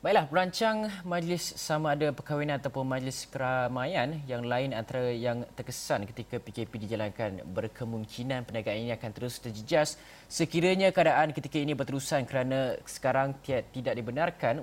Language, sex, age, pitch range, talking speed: Malay, male, 20-39, 120-140 Hz, 130 wpm